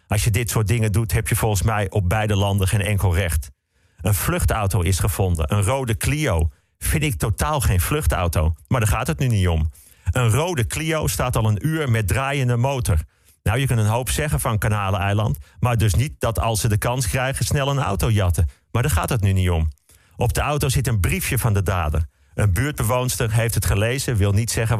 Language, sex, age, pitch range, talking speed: Dutch, male, 40-59, 95-120 Hz, 220 wpm